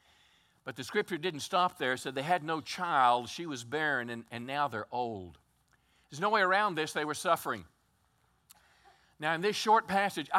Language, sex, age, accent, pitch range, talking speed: English, male, 50-69, American, 135-190 Hz, 190 wpm